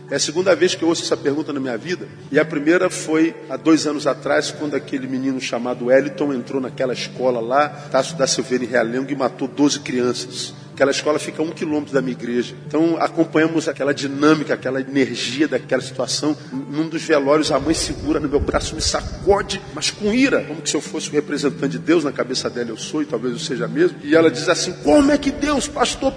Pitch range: 130-170 Hz